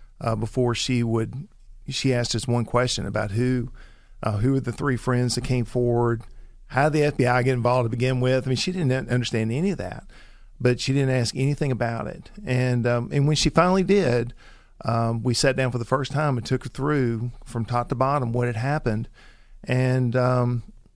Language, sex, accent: English, male, American